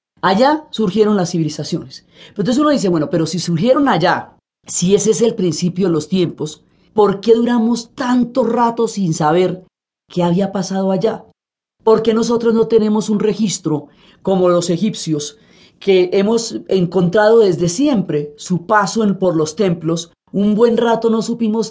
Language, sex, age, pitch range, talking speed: Spanish, female, 30-49, 170-215 Hz, 155 wpm